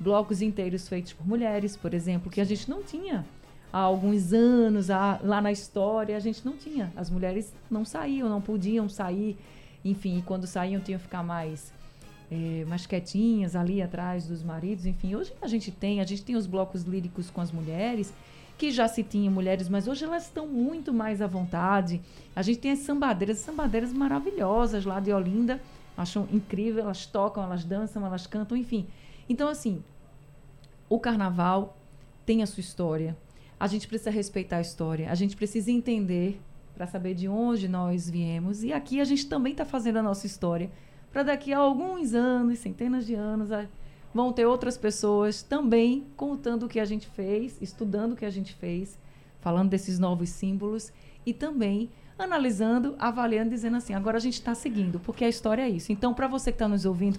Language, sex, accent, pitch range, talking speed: Portuguese, female, Brazilian, 185-230 Hz, 185 wpm